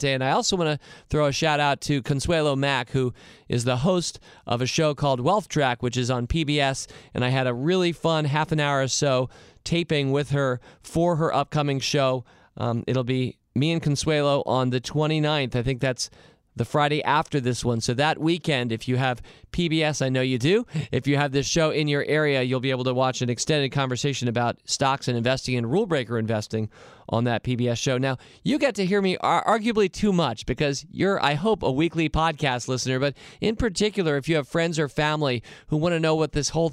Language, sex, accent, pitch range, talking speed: English, male, American, 125-160 Hz, 215 wpm